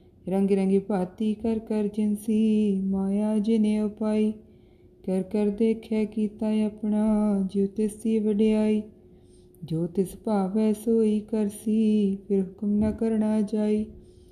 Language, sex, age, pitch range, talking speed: Punjabi, female, 20-39, 200-220 Hz, 115 wpm